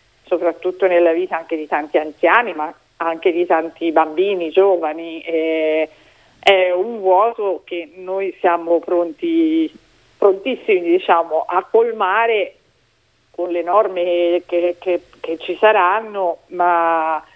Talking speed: 120 wpm